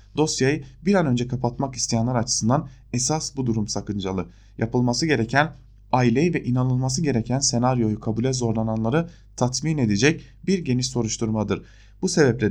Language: German